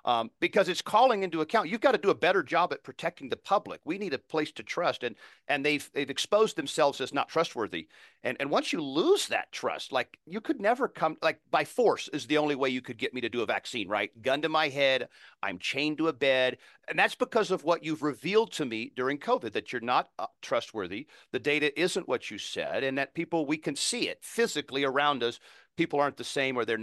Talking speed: 235 wpm